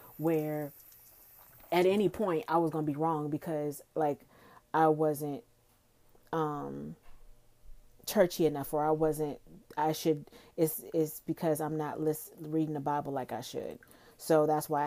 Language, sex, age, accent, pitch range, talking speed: English, female, 30-49, American, 140-165 Hz, 150 wpm